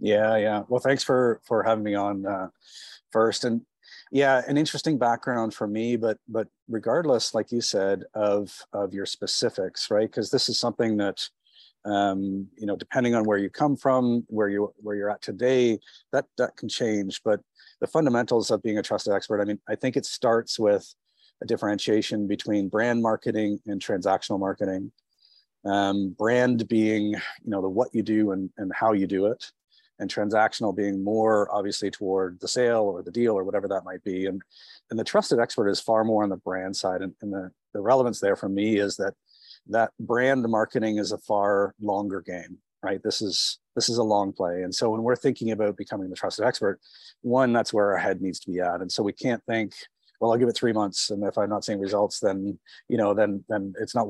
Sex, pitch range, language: male, 100-115 Hz, English